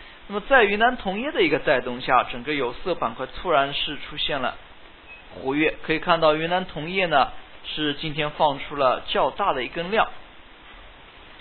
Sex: male